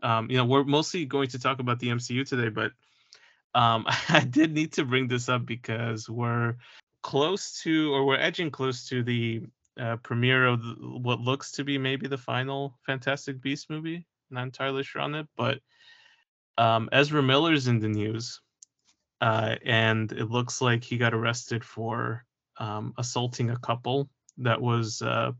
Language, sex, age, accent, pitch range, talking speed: English, male, 20-39, American, 115-140 Hz, 170 wpm